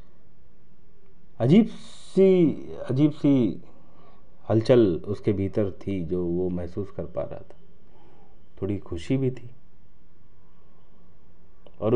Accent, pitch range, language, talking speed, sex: native, 85-105 Hz, Hindi, 100 wpm, male